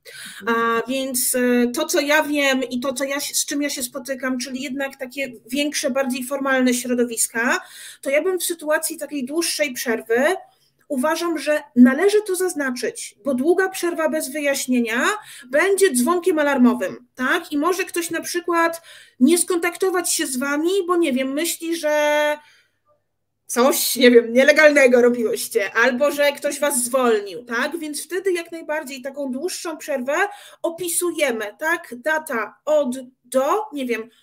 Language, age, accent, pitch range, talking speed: Polish, 30-49, native, 265-330 Hz, 140 wpm